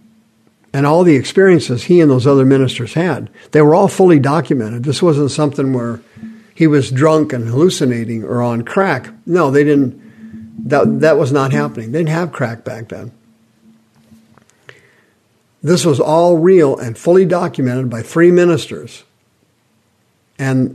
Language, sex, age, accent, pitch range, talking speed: English, male, 50-69, American, 120-165 Hz, 150 wpm